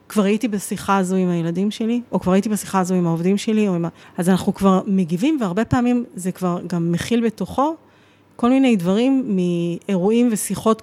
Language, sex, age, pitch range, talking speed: Hebrew, female, 30-49, 180-220 Hz, 185 wpm